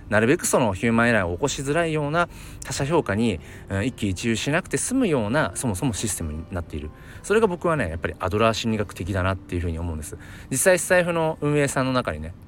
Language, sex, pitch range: Japanese, male, 85-115 Hz